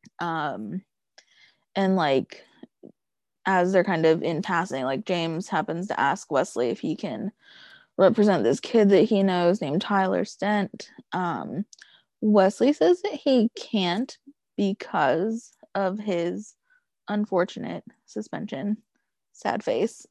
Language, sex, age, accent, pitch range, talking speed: English, female, 20-39, American, 185-225 Hz, 120 wpm